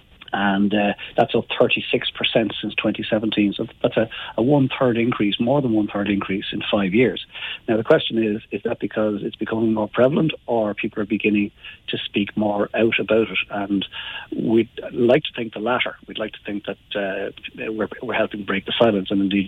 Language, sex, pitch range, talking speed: English, male, 100-115 Hz, 190 wpm